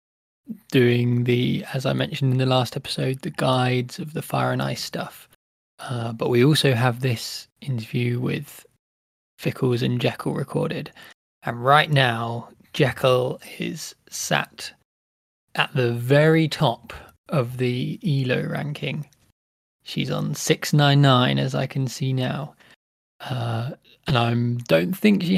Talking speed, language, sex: 135 wpm, English, male